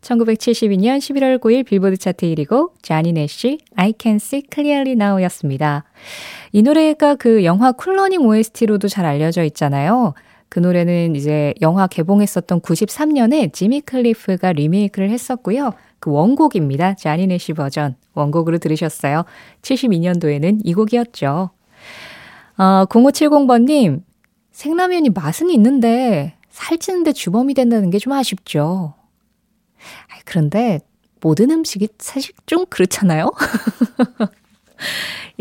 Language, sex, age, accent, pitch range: Korean, female, 20-39, native, 180-260 Hz